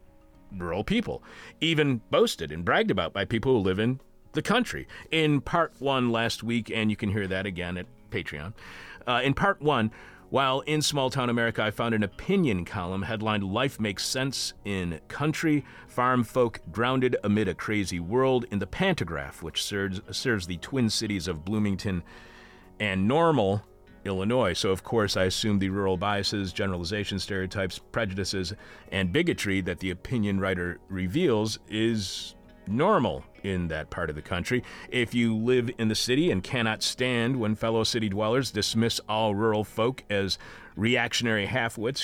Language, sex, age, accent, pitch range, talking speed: English, male, 40-59, American, 95-125 Hz, 165 wpm